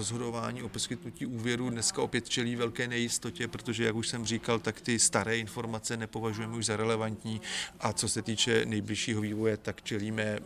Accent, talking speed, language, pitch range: native, 170 wpm, Czech, 105-115 Hz